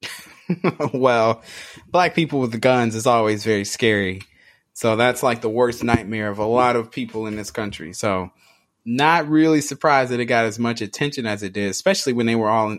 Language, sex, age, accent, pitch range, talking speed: English, male, 20-39, American, 110-140 Hz, 195 wpm